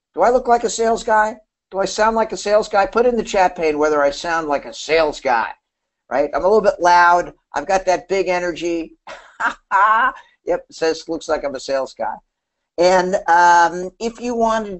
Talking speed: 205 wpm